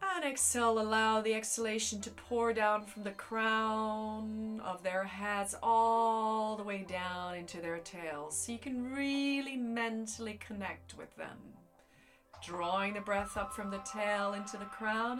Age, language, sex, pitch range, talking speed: 30-49, English, female, 185-240 Hz, 155 wpm